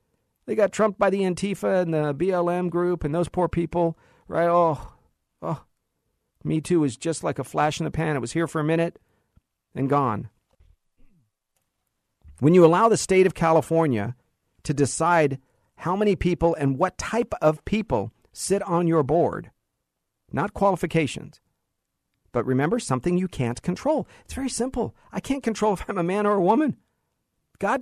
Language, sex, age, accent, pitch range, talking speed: English, male, 50-69, American, 150-190 Hz, 170 wpm